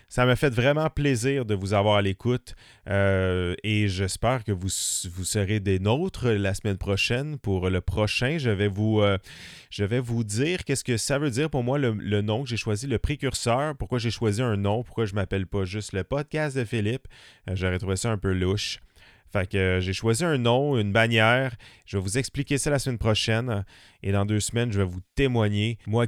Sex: male